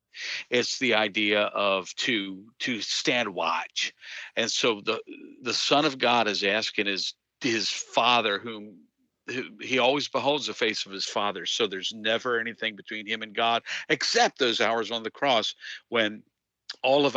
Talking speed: 165 wpm